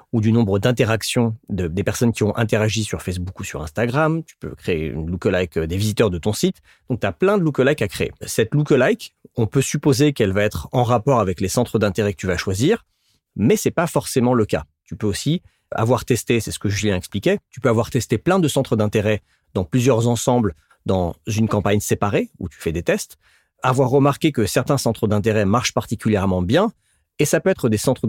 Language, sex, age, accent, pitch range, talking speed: French, male, 40-59, French, 95-125 Hz, 220 wpm